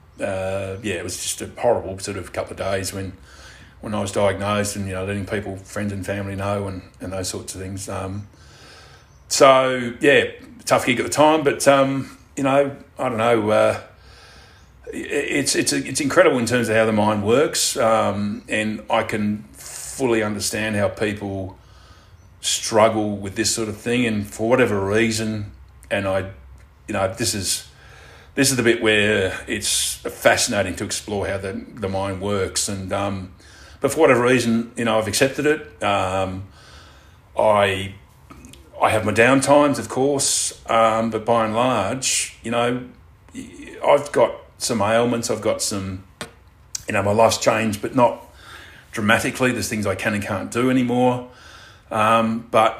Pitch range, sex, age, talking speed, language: 95-115 Hz, male, 30-49, 170 wpm, English